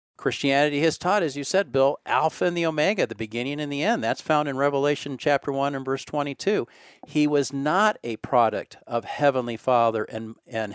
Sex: male